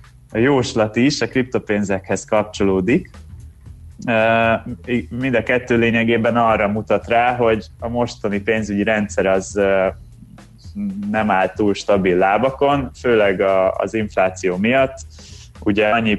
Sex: male